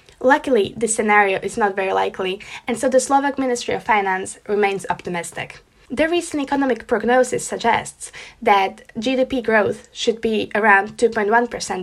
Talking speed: 140 wpm